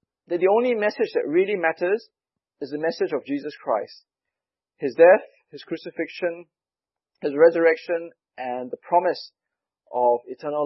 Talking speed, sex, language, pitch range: 135 wpm, male, English, 145-195 Hz